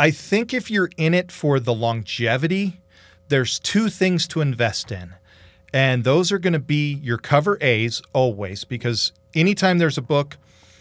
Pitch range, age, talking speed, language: 105-150 Hz, 40-59, 165 wpm, English